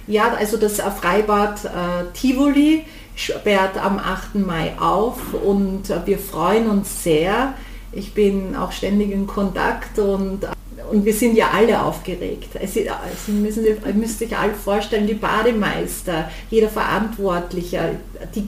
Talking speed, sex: 135 wpm, female